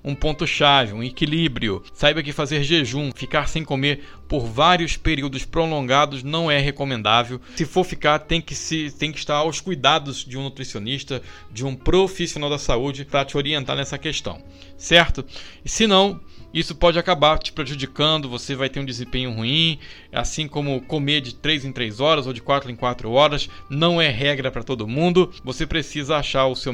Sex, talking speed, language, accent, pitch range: male, 180 wpm, Portuguese, Brazilian, 125-155 Hz